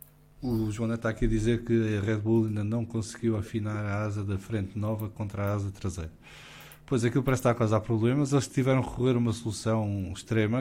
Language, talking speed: English, 220 wpm